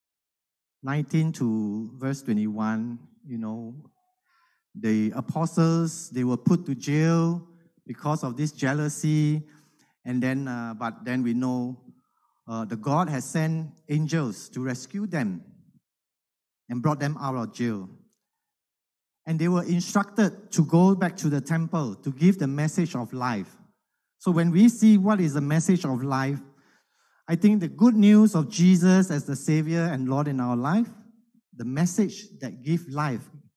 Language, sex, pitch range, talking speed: English, male, 125-170 Hz, 150 wpm